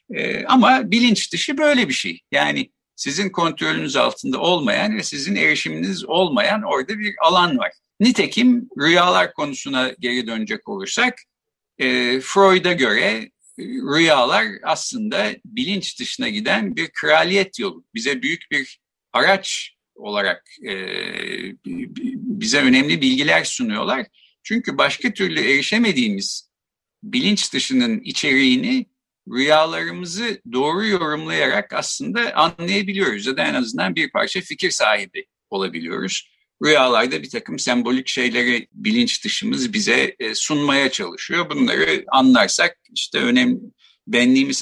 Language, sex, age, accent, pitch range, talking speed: Turkish, male, 60-79, native, 160-245 Hz, 110 wpm